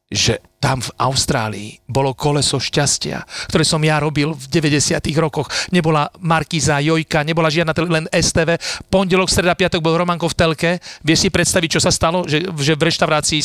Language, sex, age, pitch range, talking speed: Slovak, male, 40-59, 115-160 Hz, 175 wpm